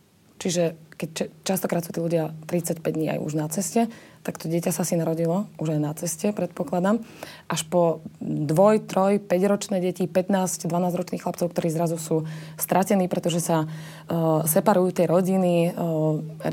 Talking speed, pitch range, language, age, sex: 165 wpm, 165-200 Hz, Slovak, 20-39, female